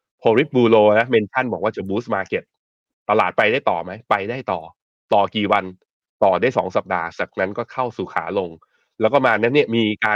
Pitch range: 100-130 Hz